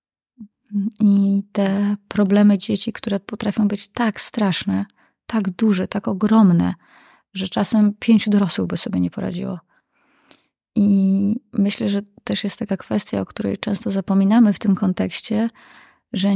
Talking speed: 130 wpm